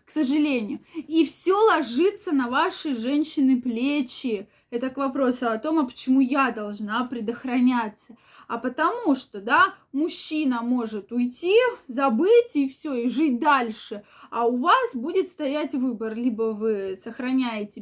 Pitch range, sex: 235-300 Hz, female